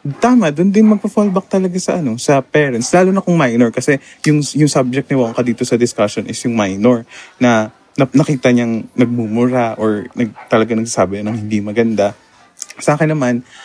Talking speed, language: 185 wpm, Filipino